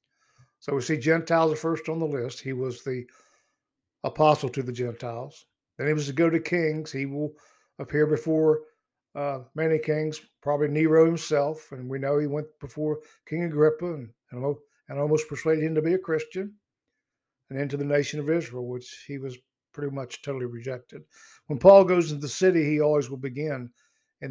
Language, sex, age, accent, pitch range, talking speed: English, male, 60-79, American, 130-155 Hz, 185 wpm